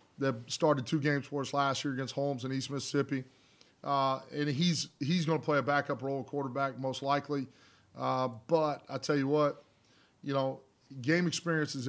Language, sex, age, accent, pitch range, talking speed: English, male, 30-49, American, 130-150 Hz, 185 wpm